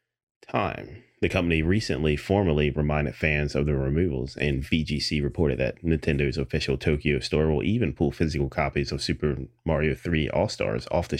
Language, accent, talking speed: English, American, 160 wpm